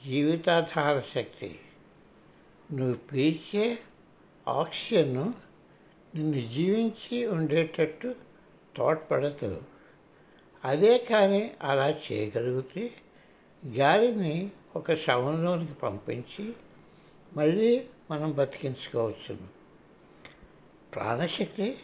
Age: 60-79